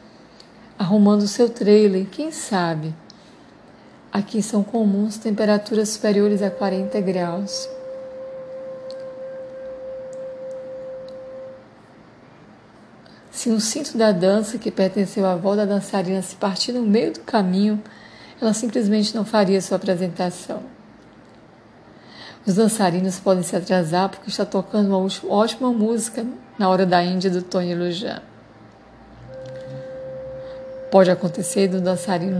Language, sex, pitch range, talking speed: Portuguese, female, 190-250 Hz, 110 wpm